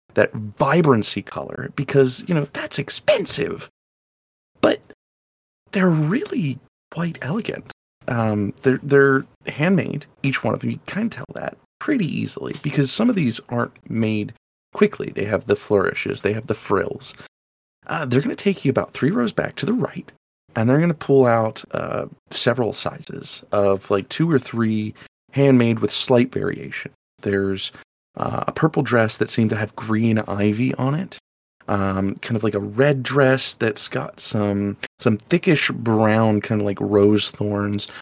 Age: 30-49